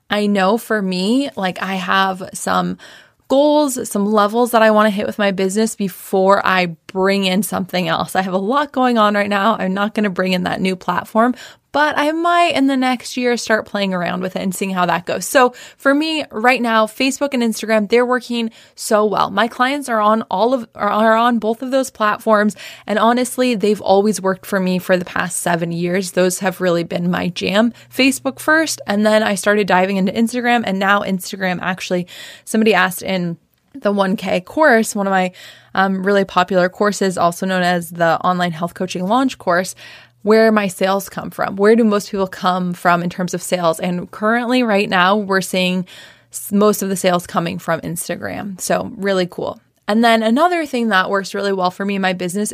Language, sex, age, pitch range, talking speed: English, female, 20-39, 185-230 Hz, 205 wpm